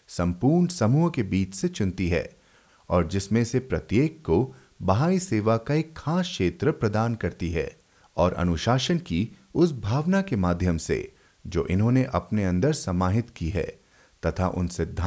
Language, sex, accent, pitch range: Hindi, male, native, 95-145 Hz